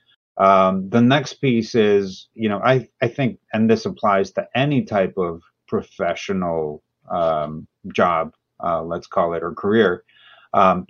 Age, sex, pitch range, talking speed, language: 30-49, male, 95-130 Hz, 150 wpm, English